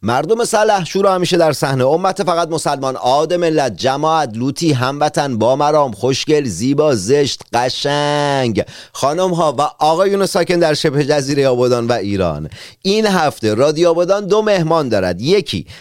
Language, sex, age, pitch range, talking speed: Persian, male, 40-59, 135-185 Hz, 150 wpm